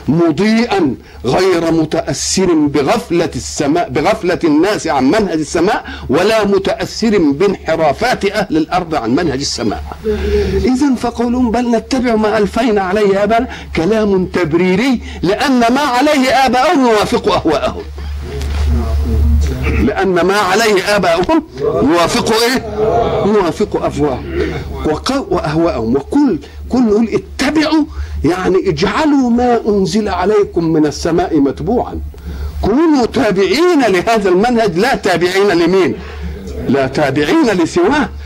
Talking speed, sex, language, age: 100 wpm, male, Arabic, 50-69